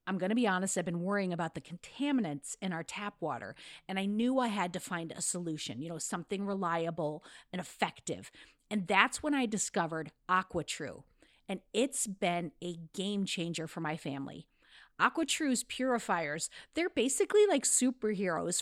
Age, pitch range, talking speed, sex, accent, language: 40-59, 180-250 Hz, 165 wpm, female, American, English